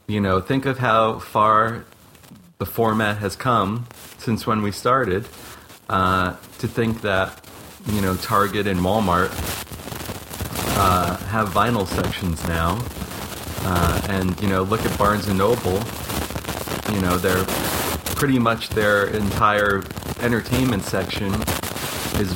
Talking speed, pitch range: 125 wpm, 90-105 Hz